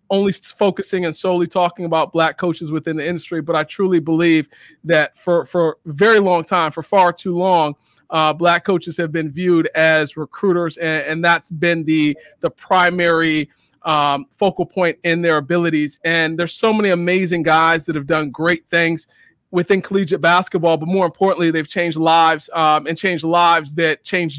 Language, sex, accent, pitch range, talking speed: English, male, American, 165-185 Hz, 175 wpm